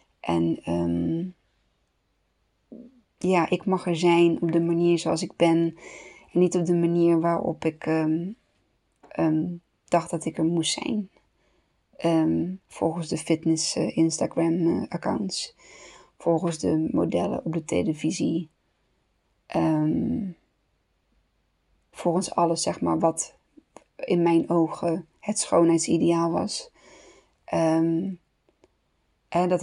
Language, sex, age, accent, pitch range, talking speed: Dutch, female, 20-39, Dutch, 160-175 Hz, 100 wpm